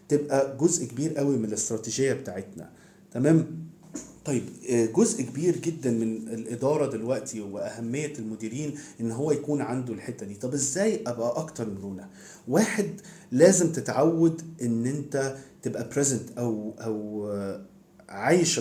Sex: male